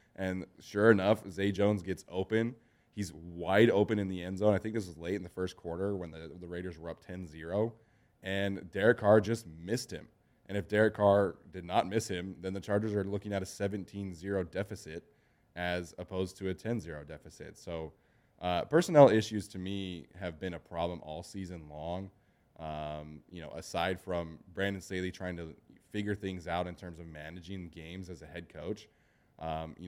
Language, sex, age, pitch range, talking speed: English, male, 20-39, 85-100 Hz, 190 wpm